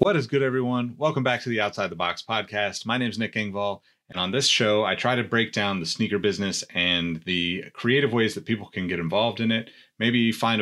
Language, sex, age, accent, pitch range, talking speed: English, male, 30-49, American, 100-125 Hz, 235 wpm